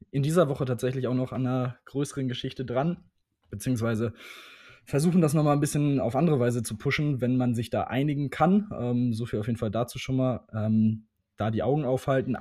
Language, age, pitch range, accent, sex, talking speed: German, 20-39, 120-145 Hz, German, male, 205 wpm